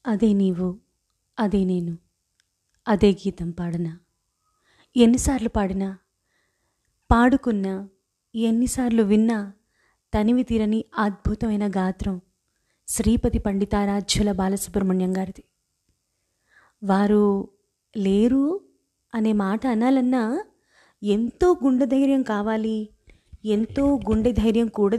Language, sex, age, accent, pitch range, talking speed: Telugu, female, 30-49, native, 205-250 Hz, 75 wpm